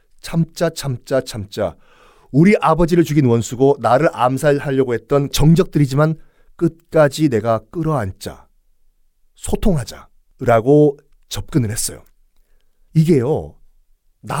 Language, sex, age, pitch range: Korean, male, 40-59, 105-175 Hz